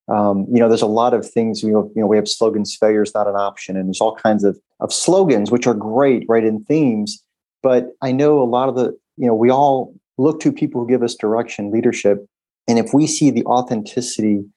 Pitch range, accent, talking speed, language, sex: 105-125 Hz, American, 235 wpm, English, male